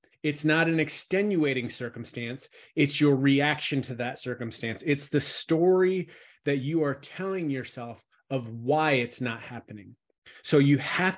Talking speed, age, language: 145 wpm, 30-49, English